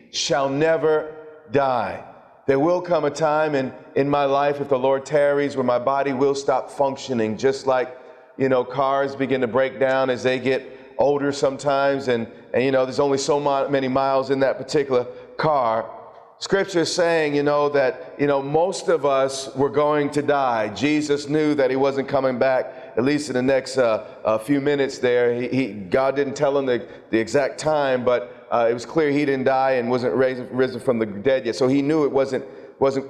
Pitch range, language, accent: 130-150 Hz, English, American